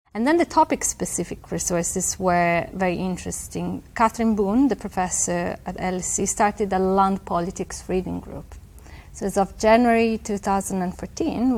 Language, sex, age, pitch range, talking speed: English, female, 30-49, 170-190 Hz, 130 wpm